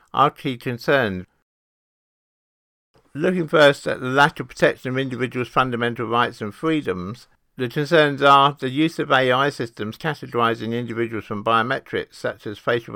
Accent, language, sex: British, English, male